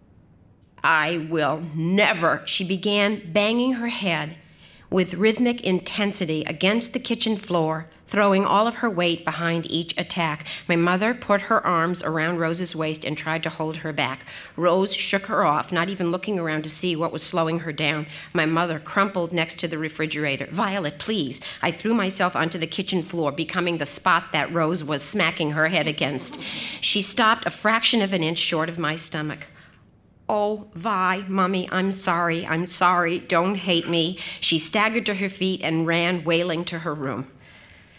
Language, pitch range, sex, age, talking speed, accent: English, 155-195 Hz, female, 50-69, 175 wpm, American